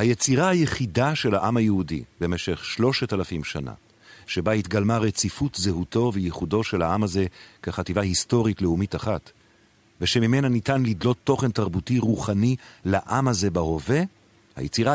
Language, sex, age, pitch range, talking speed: Hebrew, male, 50-69, 95-120 Hz, 125 wpm